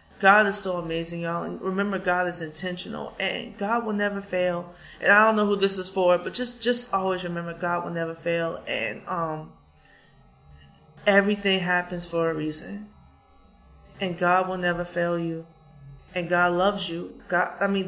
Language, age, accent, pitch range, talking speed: English, 20-39, American, 165-200 Hz, 175 wpm